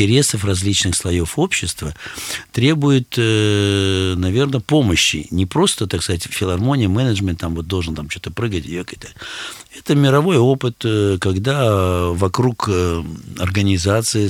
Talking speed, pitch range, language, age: 110 wpm, 95-130 Hz, Russian, 50-69